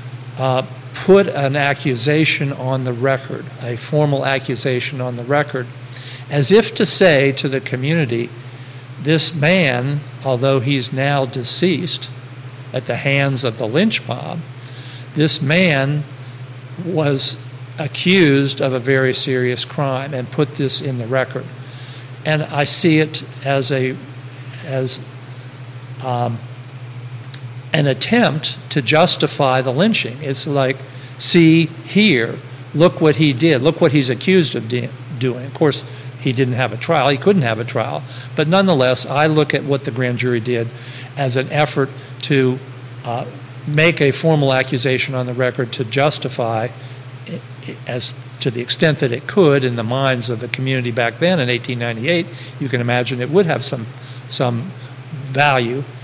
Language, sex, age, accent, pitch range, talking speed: English, male, 50-69, American, 125-145 Hz, 150 wpm